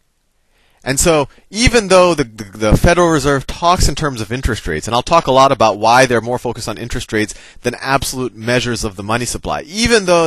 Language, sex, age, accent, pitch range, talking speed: English, male, 30-49, American, 100-145 Hz, 210 wpm